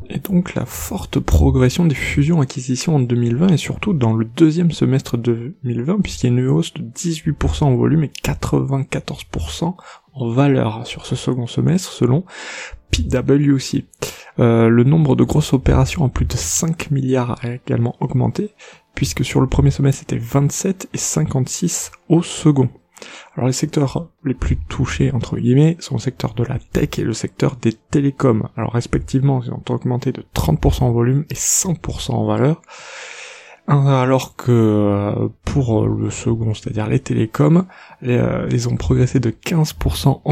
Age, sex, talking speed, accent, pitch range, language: 20-39, male, 160 wpm, French, 115-145 Hz, French